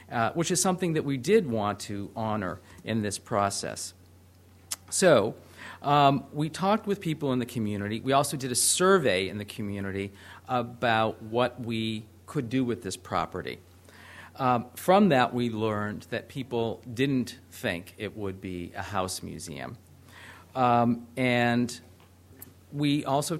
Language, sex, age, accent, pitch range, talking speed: English, male, 50-69, American, 100-130 Hz, 145 wpm